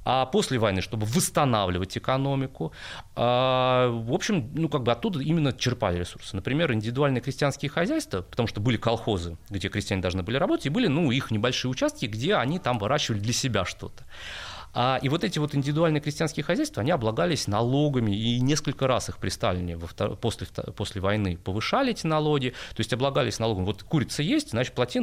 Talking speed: 170 wpm